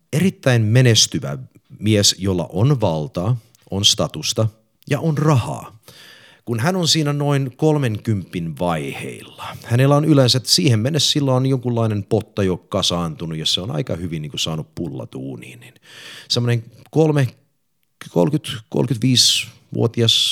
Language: Finnish